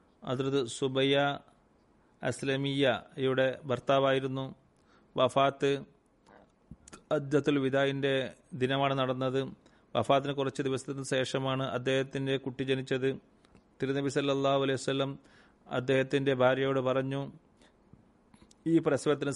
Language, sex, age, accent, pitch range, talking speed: Malayalam, male, 30-49, native, 130-140 Hz, 80 wpm